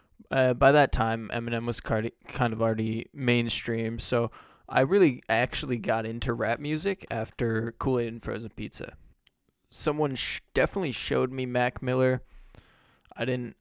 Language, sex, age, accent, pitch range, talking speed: English, male, 20-39, American, 115-130 Hz, 140 wpm